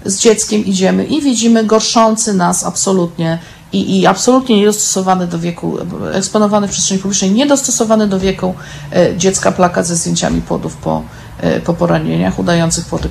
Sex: female